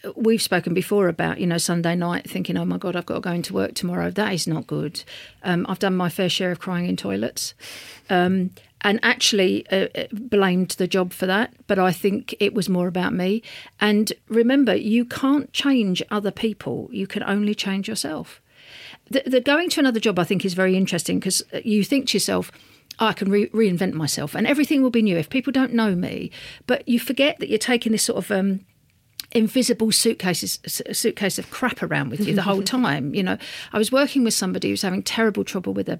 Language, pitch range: English, 180-225 Hz